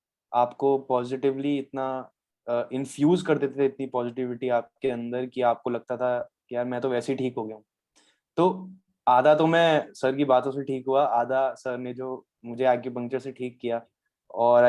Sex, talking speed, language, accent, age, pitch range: male, 190 wpm, English, Indian, 20-39, 120-135 Hz